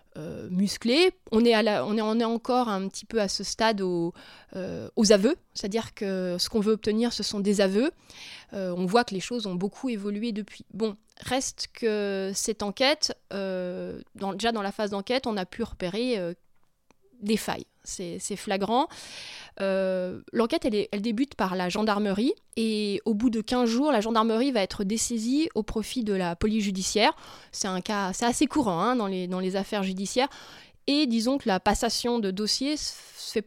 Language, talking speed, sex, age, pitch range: French, 195 wpm, female, 20-39, 195-245 Hz